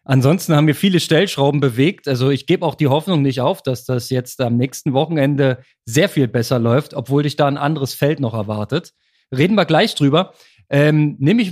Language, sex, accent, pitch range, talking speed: German, male, German, 140-175 Hz, 205 wpm